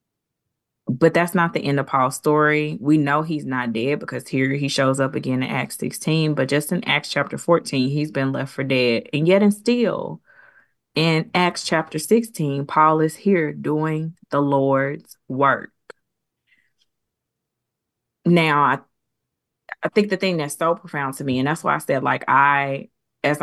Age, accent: 20-39, American